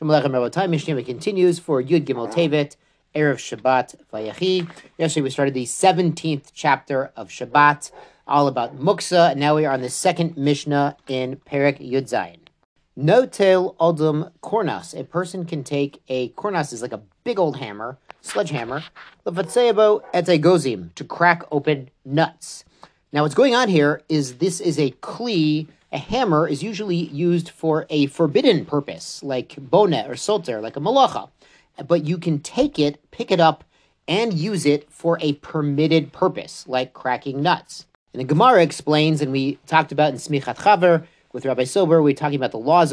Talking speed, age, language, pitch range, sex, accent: 170 wpm, 40-59, English, 140-170 Hz, male, American